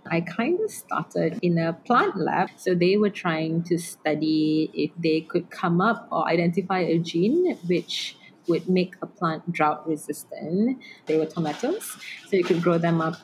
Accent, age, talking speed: Malaysian, 20-39, 175 wpm